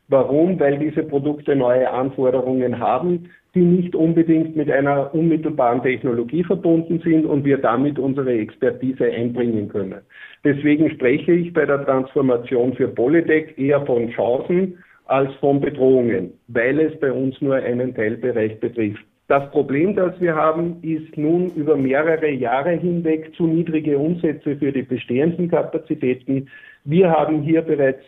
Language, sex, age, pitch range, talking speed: German, male, 50-69, 135-160 Hz, 145 wpm